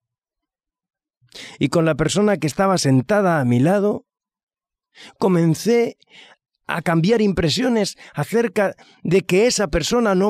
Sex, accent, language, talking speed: male, Spanish, Spanish, 115 wpm